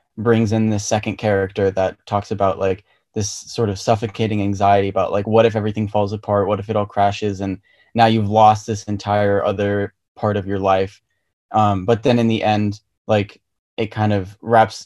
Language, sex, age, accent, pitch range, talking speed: English, male, 20-39, American, 100-110 Hz, 195 wpm